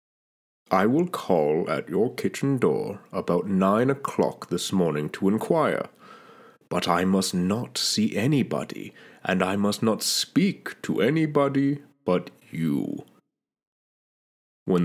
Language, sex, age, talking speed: English, male, 30-49, 120 wpm